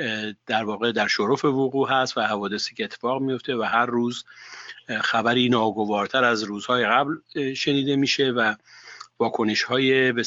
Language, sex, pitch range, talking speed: Persian, male, 110-130 Hz, 145 wpm